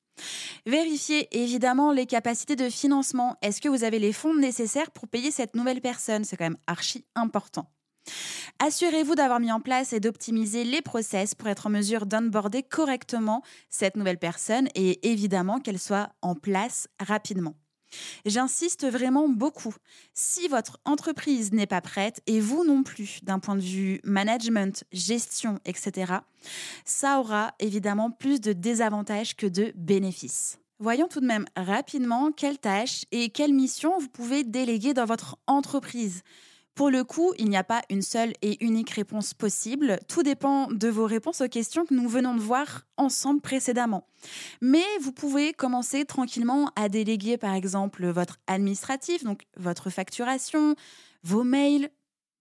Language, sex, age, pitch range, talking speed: French, female, 20-39, 205-270 Hz, 155 wpm